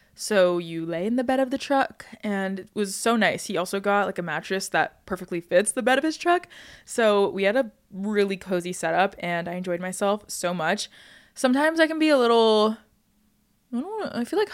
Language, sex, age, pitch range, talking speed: English, female, 20-39, 190-235 Hz, 220 wpm